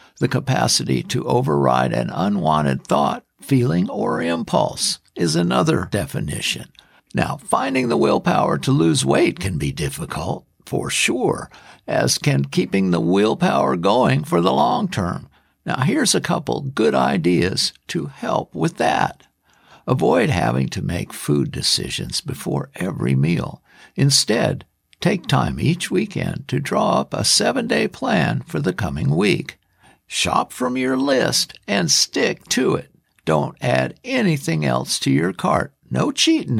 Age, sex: 60-79, male